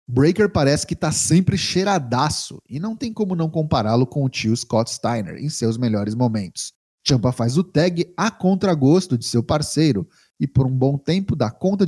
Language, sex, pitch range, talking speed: Portuguese, male, 125-185 Hz, 185 wpm